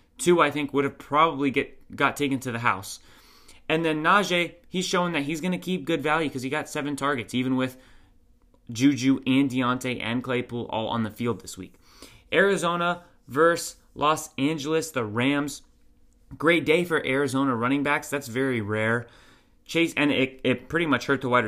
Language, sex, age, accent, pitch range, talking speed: English, male, 20-39, American, 120-155 Hz, 185 wpm